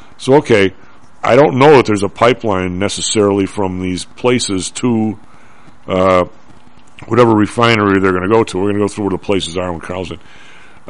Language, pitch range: English, 100-115 Hz